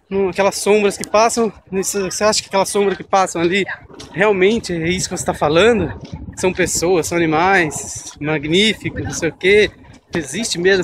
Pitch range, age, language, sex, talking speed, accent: 155-210 Hz, 20-39, English, male, 165 wpm, Brazilian